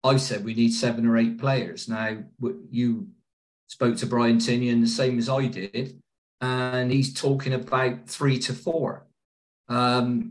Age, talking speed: 40-59, 155 wpm